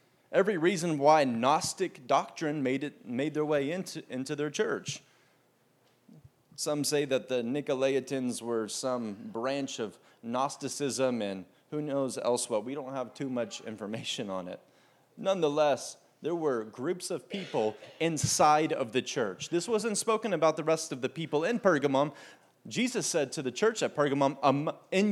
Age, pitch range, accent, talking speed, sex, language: 30-49, 130-165 Hz, American, 155 wpm, male, English